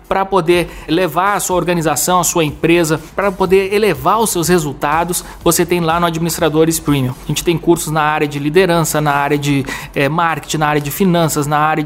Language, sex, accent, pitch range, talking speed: Portuguese, male, Brazilian, 155-185 Hz, 195 wpm